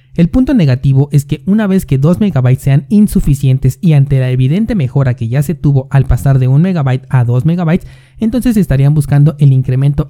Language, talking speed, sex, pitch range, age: Spanish, 200 wpm, male, 130-165 Hz, 30-49